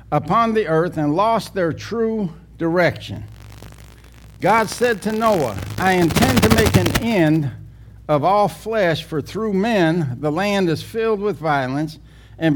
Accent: American